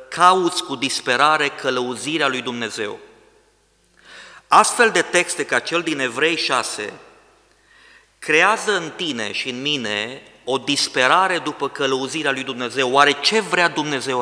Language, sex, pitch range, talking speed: Romanian, male, 130-185 Hz, 125 wpm